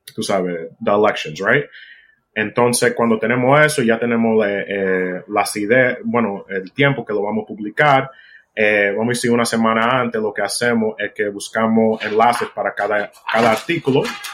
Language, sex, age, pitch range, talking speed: Spanish, male, 30-49, 105-125 Hz, 165 wpm